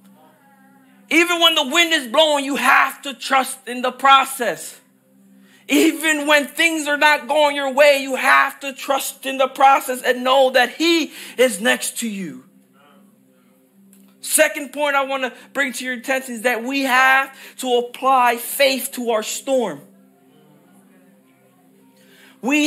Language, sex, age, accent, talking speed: English, male, 40-59, American, 150 wpm